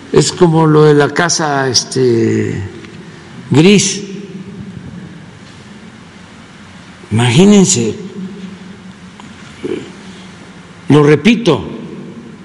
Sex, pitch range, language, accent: male, 135-180 Hz, Spanish, Mexican